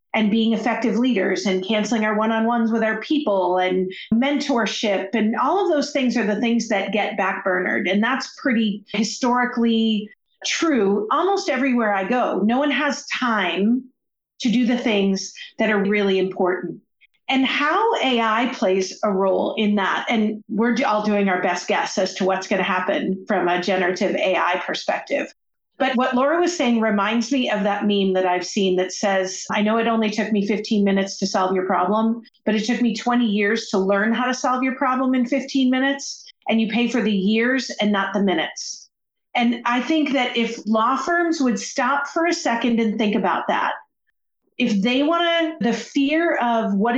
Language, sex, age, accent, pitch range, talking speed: English, female, 40-59, American, 200-255 Hz, 190 wpm